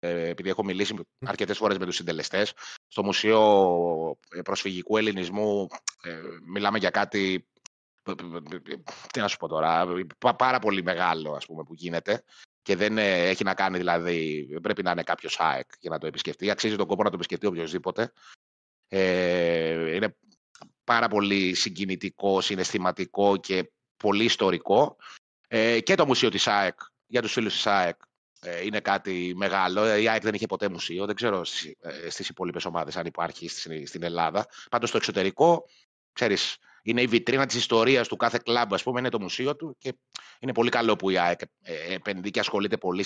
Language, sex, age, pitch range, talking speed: Greek, male, 30-49, 85-110 Hz, 155 wpm